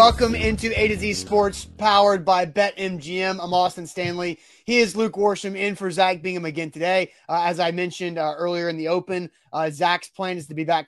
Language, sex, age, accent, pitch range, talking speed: English, male, 30-49, American, 170-200 Hz, 215 wpm